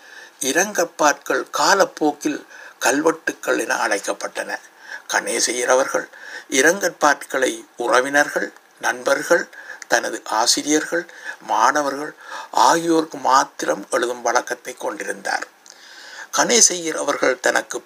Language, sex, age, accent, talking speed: Tamil, male, 60-79, native, 70 wpm